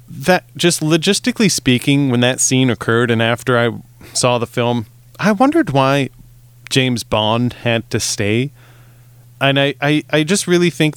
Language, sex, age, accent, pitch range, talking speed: English, male, 30-49, American, 120-140 Hz, 160 wpm